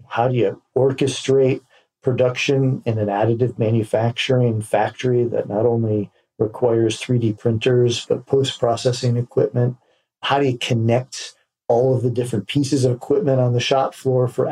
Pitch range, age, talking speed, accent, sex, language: 105-130 Hz, 50-69, 145 wpm, American, male, English